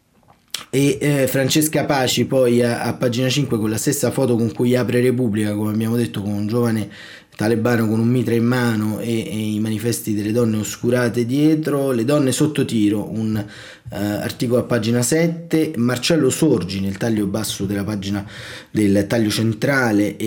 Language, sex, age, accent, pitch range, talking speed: Italian, male, 30-49, native, 105-130 Hz, 170 wpm